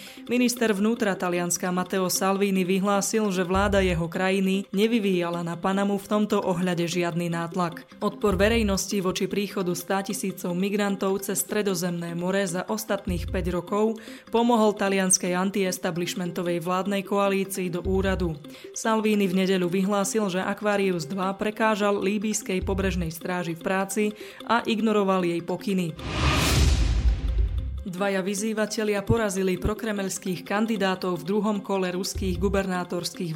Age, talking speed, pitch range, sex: 20-39, 120 wpm, 180-205 Hz, female